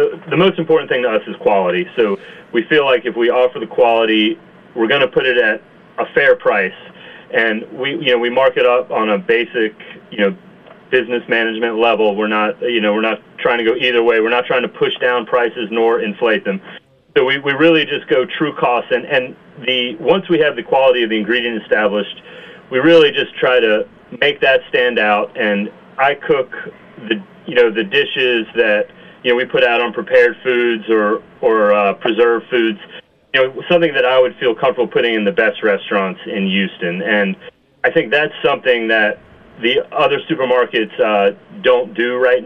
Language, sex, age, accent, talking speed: English, male, 30-49, American, 200 wpm